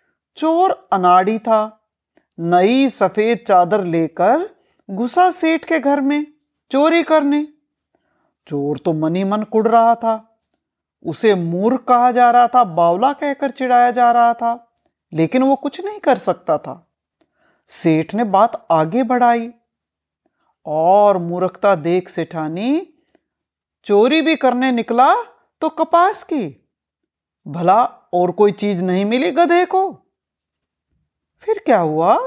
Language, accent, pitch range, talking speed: Hindi, native, 195-310 Hz, 125 wpm